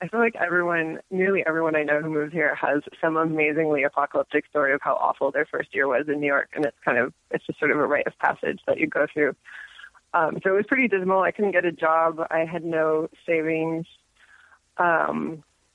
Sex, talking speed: female, 220 wpm